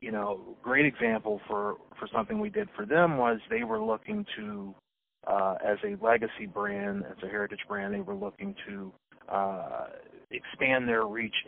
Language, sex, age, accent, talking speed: English, male, 40-59, American, 180 wpm